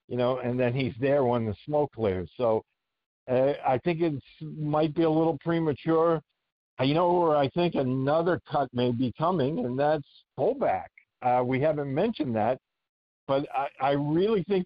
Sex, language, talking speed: male, English, 180 wpm